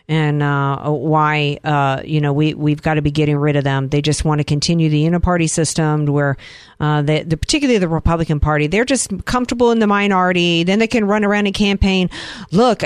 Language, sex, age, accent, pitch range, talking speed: English, female, 50-69, American, 155-210 Hz, 210 wpm